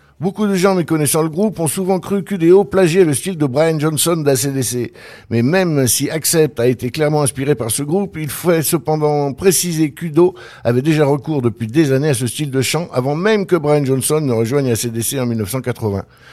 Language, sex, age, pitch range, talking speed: French, male, 60-79, 130-170 Hz, 200 wpm